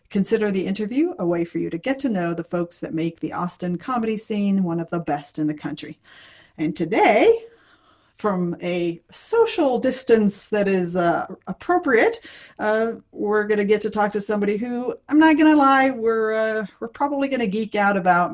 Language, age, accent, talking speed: English, 40-59, American, 195 wpm